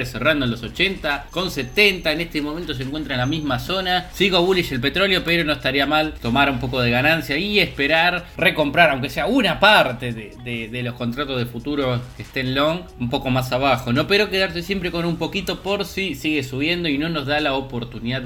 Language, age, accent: Spanish, 20-39, Argentinian